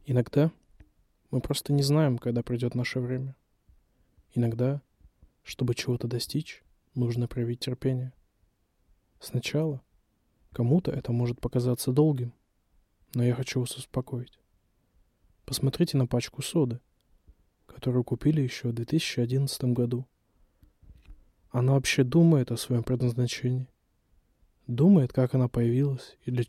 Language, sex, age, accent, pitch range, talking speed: Russian, male, 20-39, native, 120-140 Hz, 110 wpm